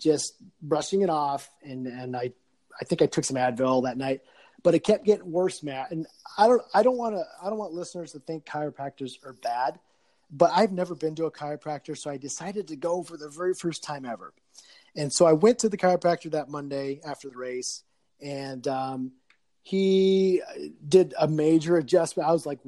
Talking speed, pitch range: 205 wpm, 140-175 Hz